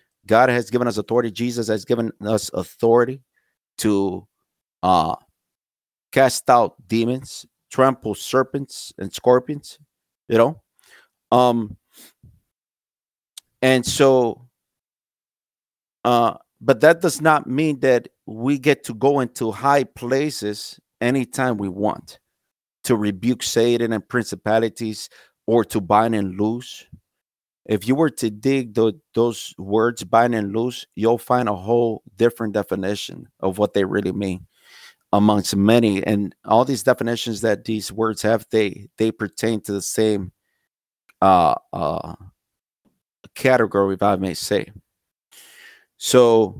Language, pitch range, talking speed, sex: English, 105-125 Hz, 125 wpm, male